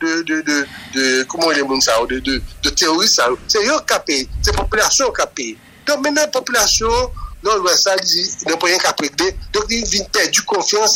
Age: 60-79